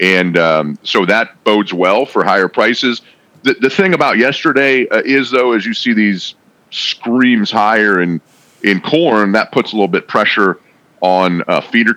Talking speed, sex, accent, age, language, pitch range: 175 wpm, male, American, 40-59, English, 90-115 Hz